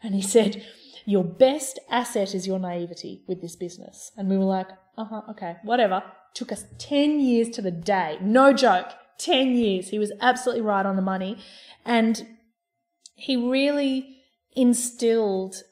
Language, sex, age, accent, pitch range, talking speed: English, female, 20-39, Australian, 190-250 Hz, 160 wpm